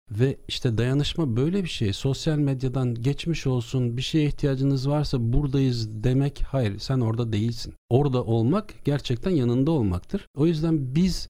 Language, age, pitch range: Turkish, 50-69, 115-145 Hz